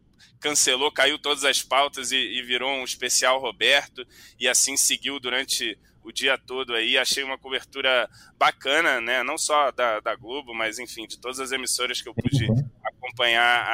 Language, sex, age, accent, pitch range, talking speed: Portuguese, male, 20-39, Brazilian, 125-140 Hz, 165 wpm